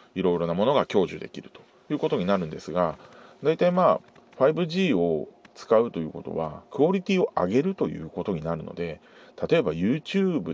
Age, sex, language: 40-59, male, Japanese